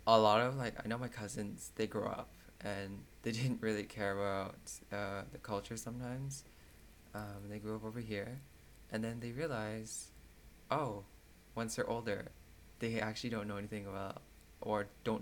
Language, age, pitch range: English, 20-39, 95-115 Hz